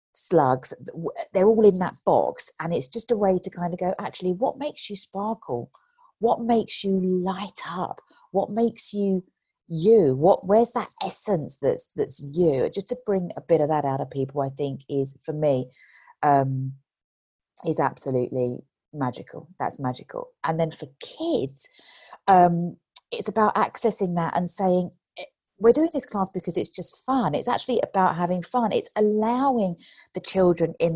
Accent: British